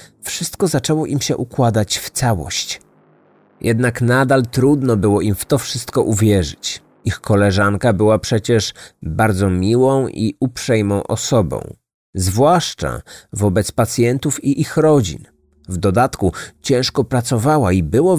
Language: Polish